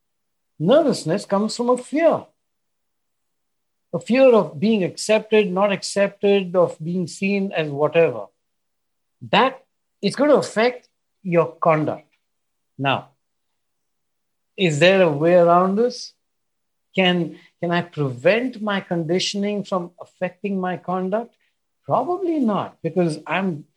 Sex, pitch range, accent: male, 140-200 Hz, Indian